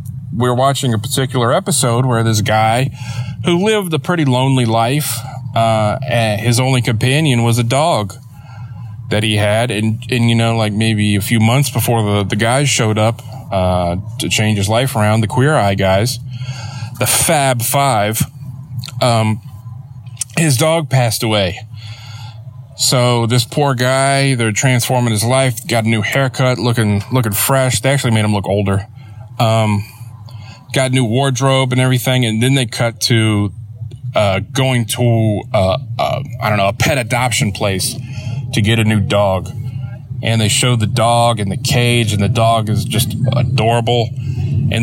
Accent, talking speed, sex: American, 165 wpm, male